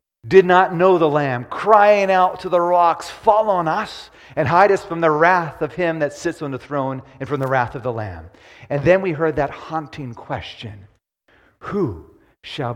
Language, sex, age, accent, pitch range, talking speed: English, male, 50-69, American, 115-145 Hz, 200 wpm